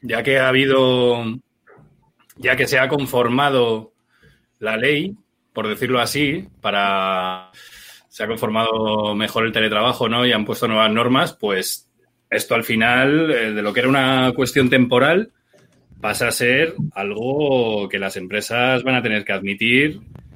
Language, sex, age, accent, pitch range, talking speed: Spanish, male, 30-49, Spanish, 100-125 Hz, 145 wpm